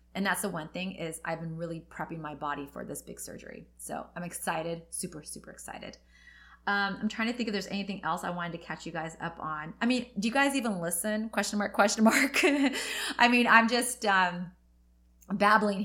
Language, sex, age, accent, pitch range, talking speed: English, female, 30-49, American, 160-210 Hz, 210 wpm